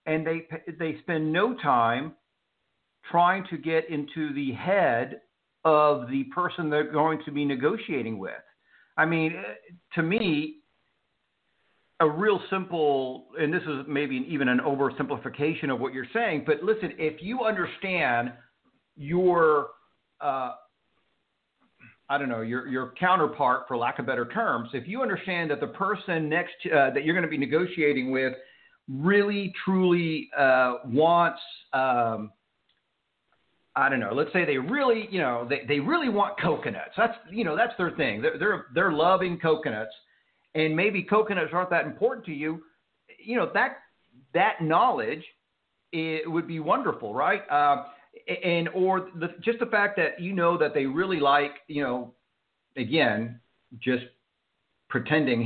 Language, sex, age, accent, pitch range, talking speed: English, male, 50-69, American, 135-175 Hz, 150 wpm